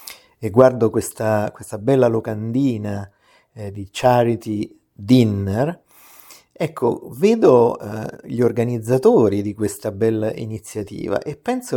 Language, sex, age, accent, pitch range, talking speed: Italian, male, 50-69, native, 105-125 Hz, 105 wpm